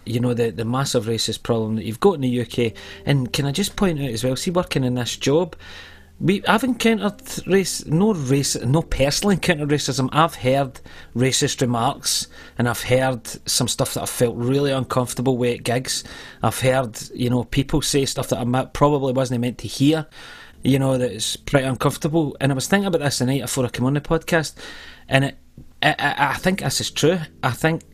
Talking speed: 205 wpm